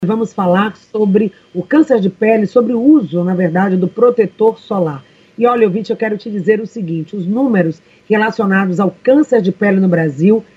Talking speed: 185 wpm